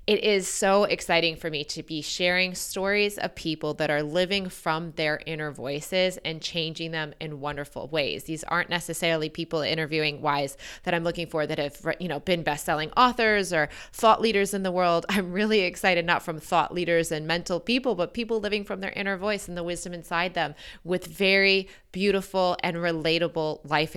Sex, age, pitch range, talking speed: female, 20-39, 155-185 Hz, 190 wpm